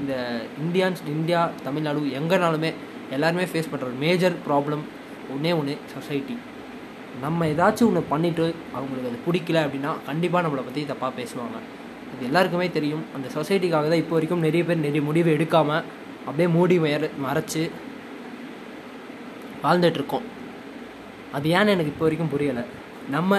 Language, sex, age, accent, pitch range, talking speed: Tamil, male, 20-39, native, 145-175 Hz, 135 wpm